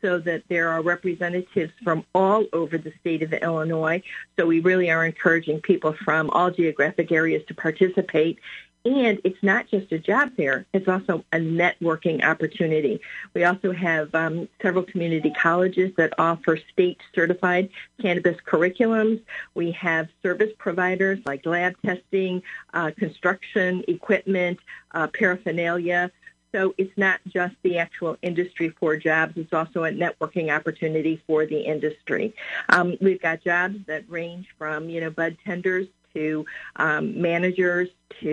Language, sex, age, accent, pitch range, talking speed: English, female, 50-69, American, 160-185 Hz, 145 wpm